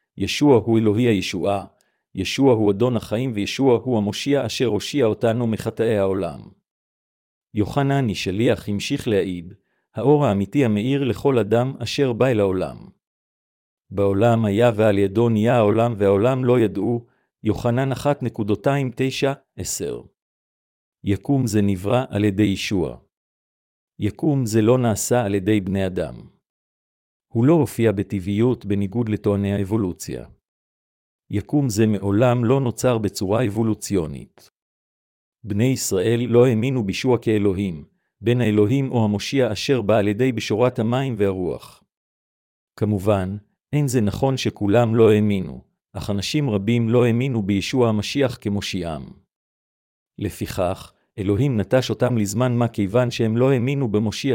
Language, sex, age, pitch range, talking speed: Hebrew, male, 50-69, 100-125 Hz, 125 wpm